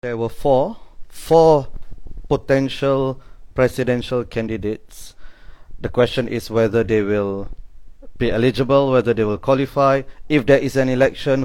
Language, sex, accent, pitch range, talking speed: English, male, Malaysian, 110-135 Hz, 125 wpm